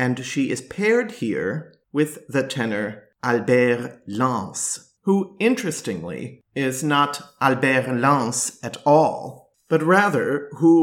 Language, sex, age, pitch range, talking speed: English, male, 50-69, 125-170 Hz, 115 wpm